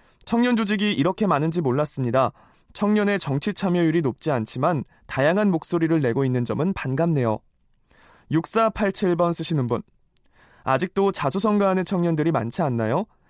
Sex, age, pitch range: male, 20-39, 135-190 Hz